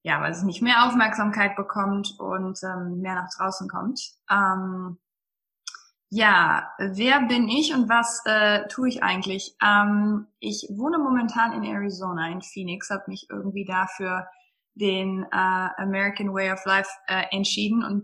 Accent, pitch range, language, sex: German, 190-230 Hz, German, female